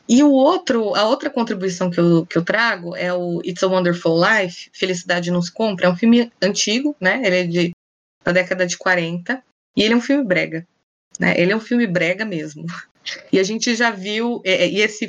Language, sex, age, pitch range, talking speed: Portuguese, female, 20-39, 185-245 Hz, 195 wpm